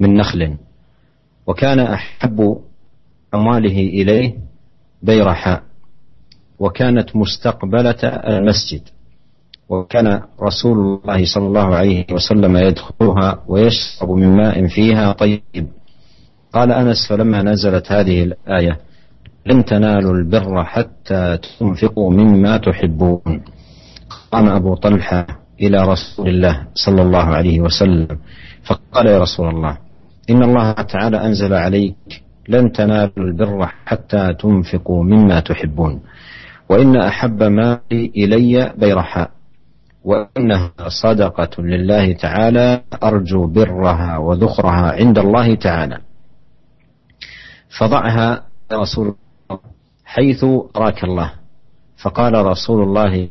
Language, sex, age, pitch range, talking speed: Indonesian, male, 50-69, 90-110 Hz, 95 wpm